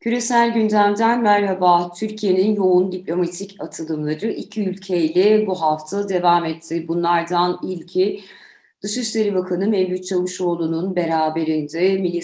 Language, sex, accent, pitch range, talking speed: Turkish, female, native, 150-185 Hz, 105 wpm